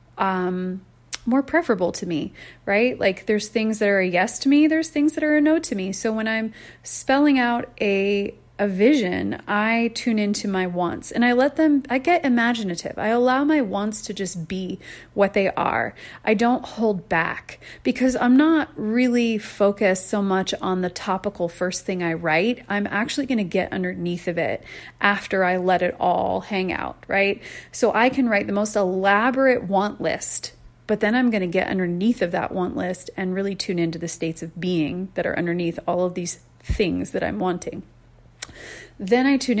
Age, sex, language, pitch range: 30-49, female, English, 185-230 Hz